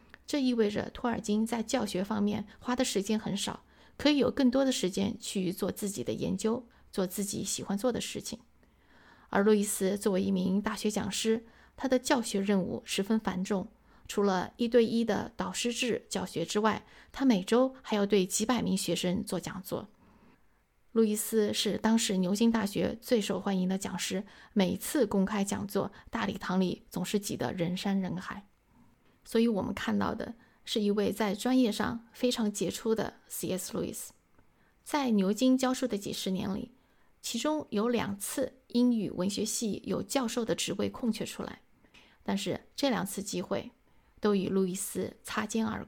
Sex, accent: female, native